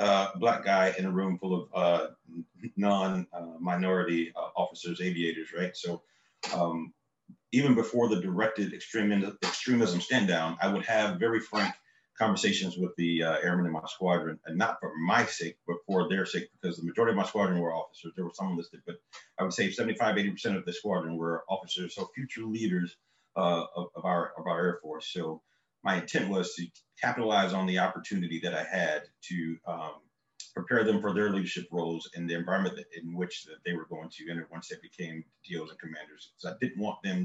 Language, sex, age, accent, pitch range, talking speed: English, male, 40-59, American, 85-100 Hz, 195 wpm